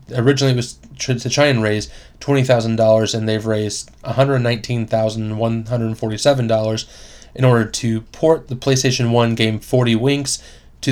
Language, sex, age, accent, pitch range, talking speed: English, male, 20-39, American, 110-125 Hz, 125 wpm